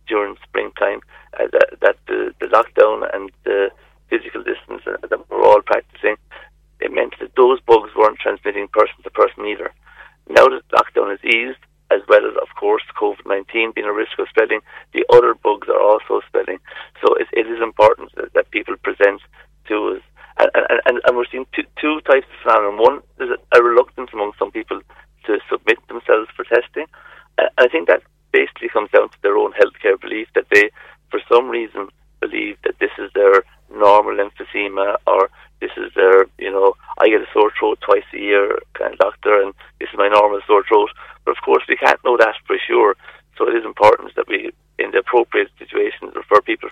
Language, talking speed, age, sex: English, 195 wpm, 50-69, male